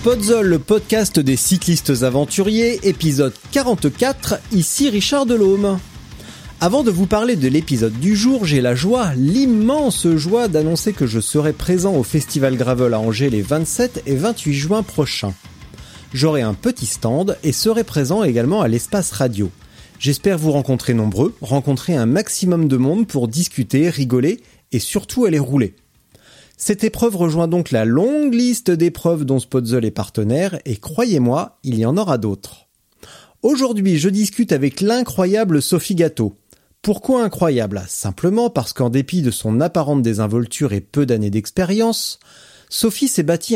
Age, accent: 30-49, French